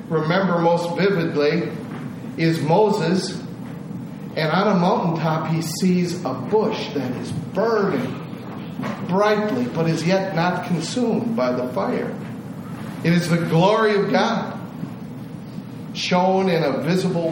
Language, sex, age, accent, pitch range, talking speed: English, male, 50-69, American, 165-215 Hz, 120 wpm